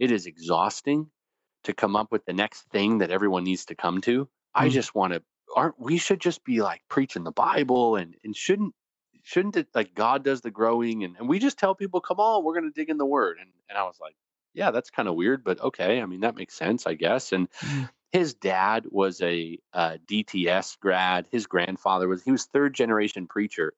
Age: 30-49